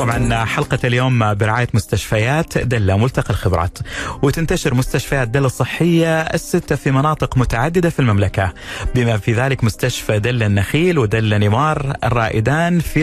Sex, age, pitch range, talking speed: male, 30-49, 110-150 Hz, 130 wpm